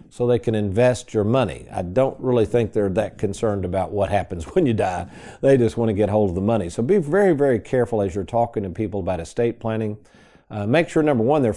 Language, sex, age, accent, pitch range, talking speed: English, male, 50-69, American, 105-135 Hz, 245 wpm